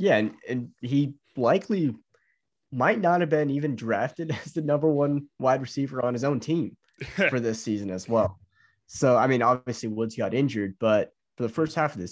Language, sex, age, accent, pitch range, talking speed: English, male, 20-39, American, 105-135 Hz, 200 wpm